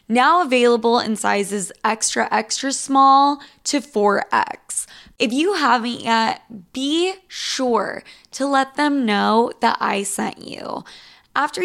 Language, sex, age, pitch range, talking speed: English, female, 10-29, 210-260 Hz, 125 wpm